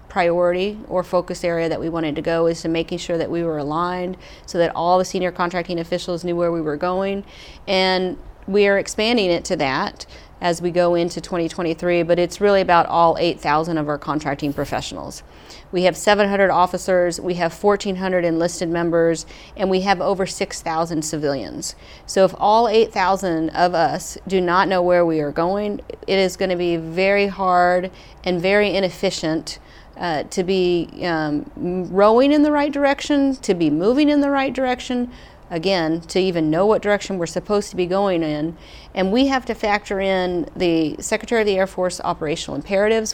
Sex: female